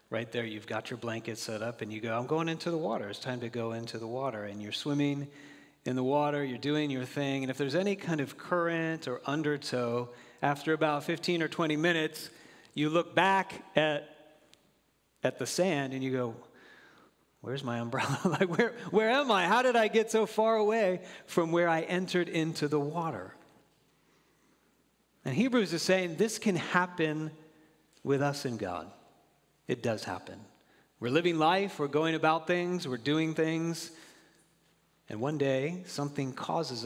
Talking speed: 175 wpm